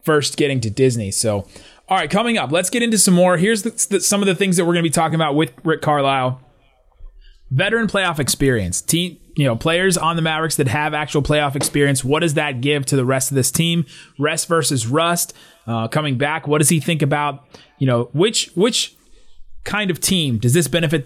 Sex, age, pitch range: male, 30-49, 135-180 Hz